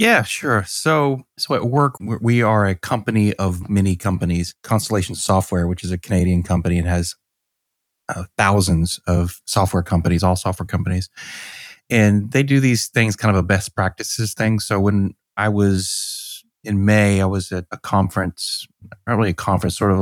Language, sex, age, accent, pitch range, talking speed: English, male, 30-49, American, 90-105 Hz, 175 wpm